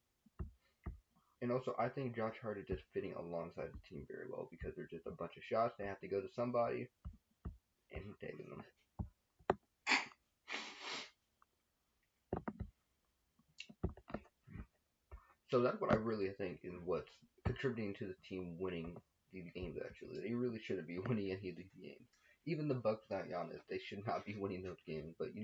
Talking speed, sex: 165 wpm, male